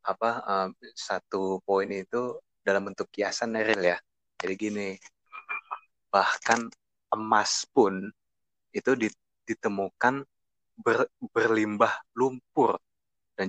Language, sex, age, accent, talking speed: Indonesian, male, 20-39, native, 95 wpm